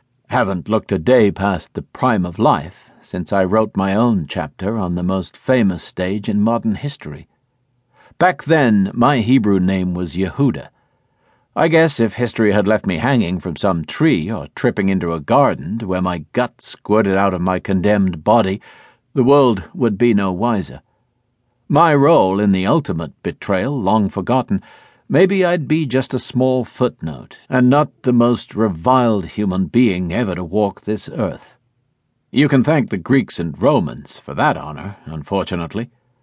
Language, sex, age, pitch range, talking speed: English, male, 50-69, 95-125 Hz, 165 wpm